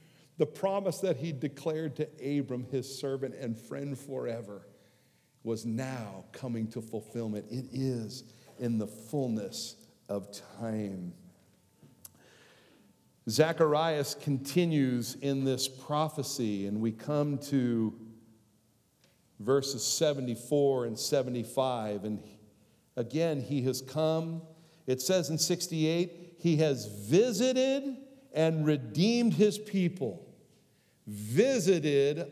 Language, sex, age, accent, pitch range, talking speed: English, male, 50-69, American, 110-155 Hz, 100 wpm